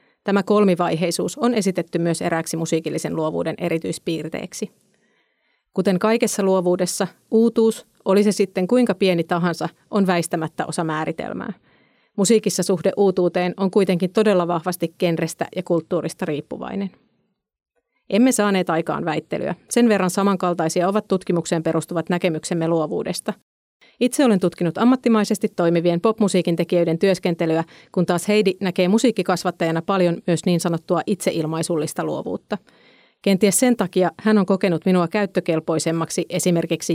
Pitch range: 170-205 Hz